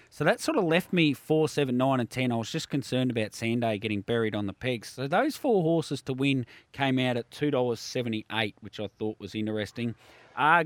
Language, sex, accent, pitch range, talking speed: English, male, Australian, 115-155 Hz, 225 wpm